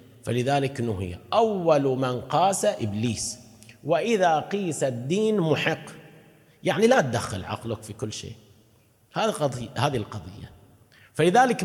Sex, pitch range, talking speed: male, 115-165 Hz, 110 wpm